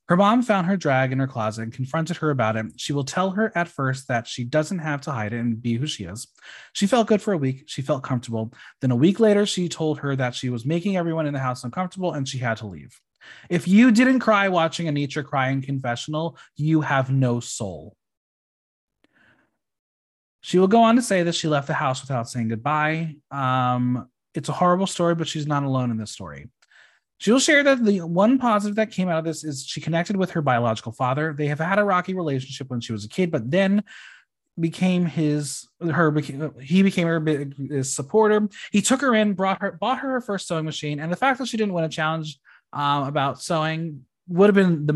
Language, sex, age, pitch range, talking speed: English, male, 20-39, 130-185 Hz, 225 wpm